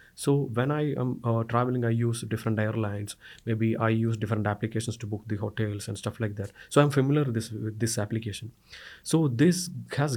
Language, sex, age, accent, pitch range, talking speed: English, male, 30-49, Indian, 110-130 Hz, 200 wpm